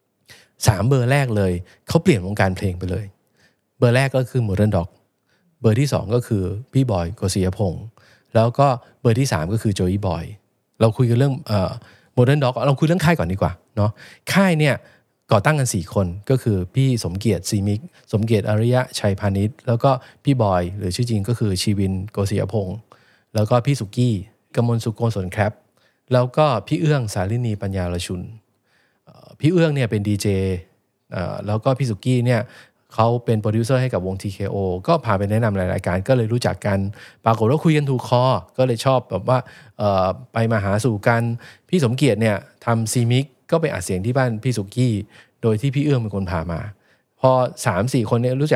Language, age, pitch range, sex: English, 20-39, 100-130 Hz, male